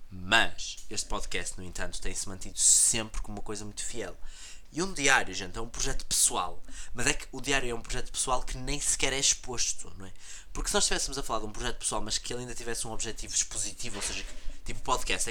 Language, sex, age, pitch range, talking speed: Portuguese, male, 20-39, 105-160 Hz, 230 wpm